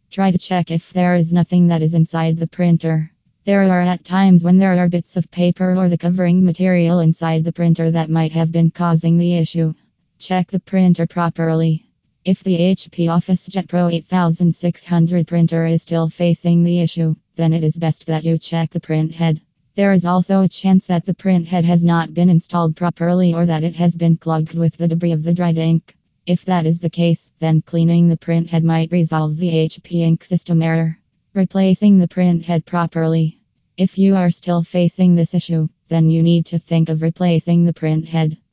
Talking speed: 190 wpm